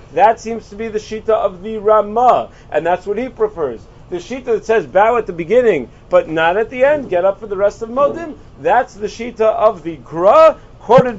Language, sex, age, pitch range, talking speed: English, male, 40-59, 170-225 Hz, 220 wpm